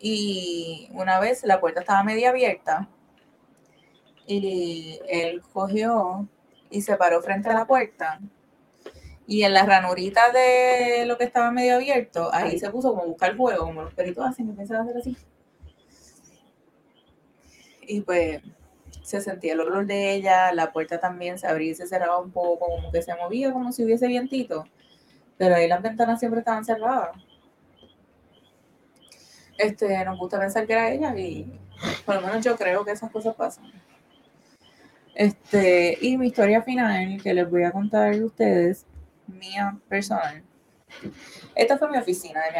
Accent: Venezuelan